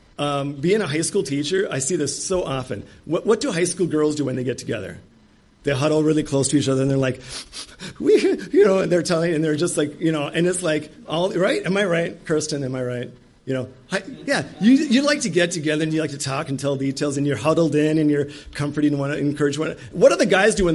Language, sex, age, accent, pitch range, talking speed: English, male, 40-59, American, 140-180 Hz, 265 wpm